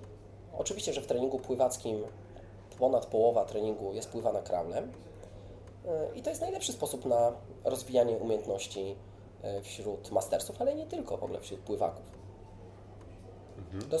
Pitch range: 100-125 Hz